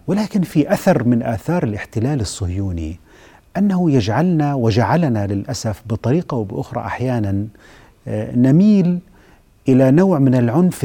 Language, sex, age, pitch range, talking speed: Arabic, male, 40-59, 105-150 Hz, 105 wpm